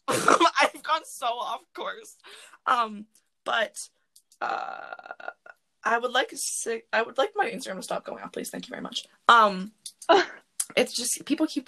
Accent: American